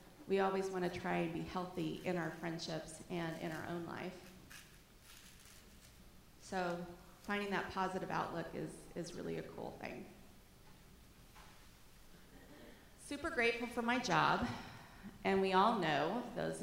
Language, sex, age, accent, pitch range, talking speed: English, female, 30-49, American, 160-190 Hz, 130 wpm